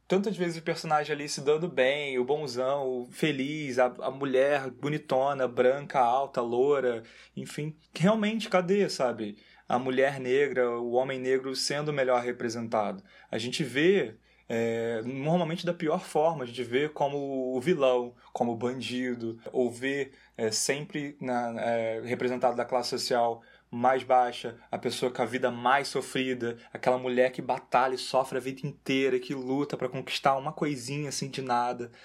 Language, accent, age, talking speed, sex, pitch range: Portuguese, Brazilian, 20-39, 160 wpm, male, 120-150 Hz